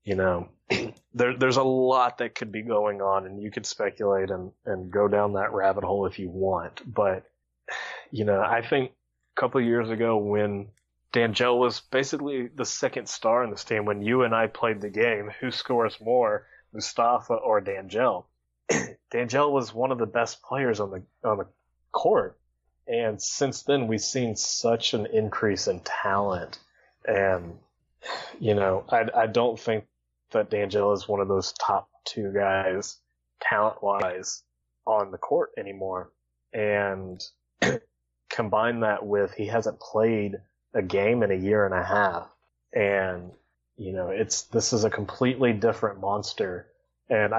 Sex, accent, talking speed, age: male, American, 160 wpm, 20-39